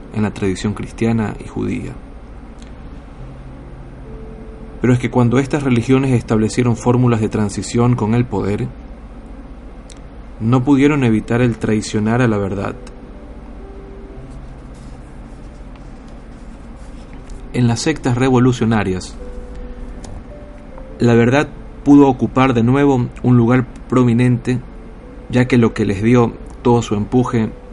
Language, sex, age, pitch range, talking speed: Spanish, male, 40-59, 105-125 Hz, 105 wpm